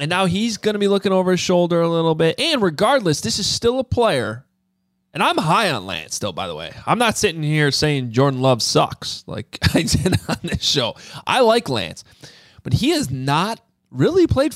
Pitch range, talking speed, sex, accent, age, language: 110-165 Hz, 215 wpm, male, American, 30-49, English